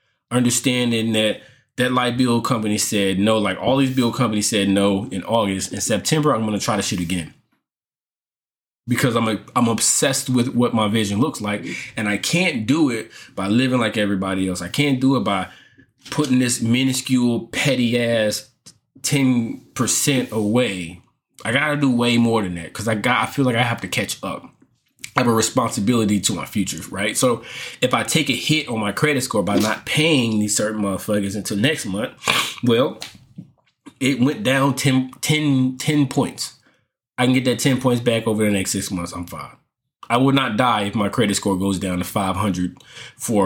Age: 20-39